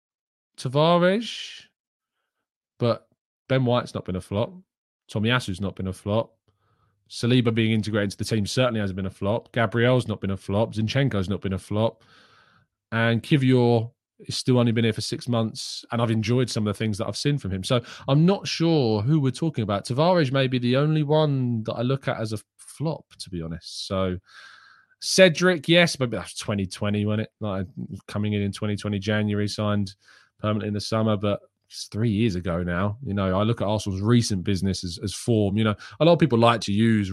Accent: British